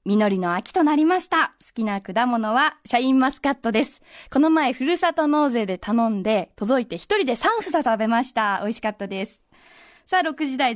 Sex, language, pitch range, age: female, Japanese, 225-325 Hz, 20-39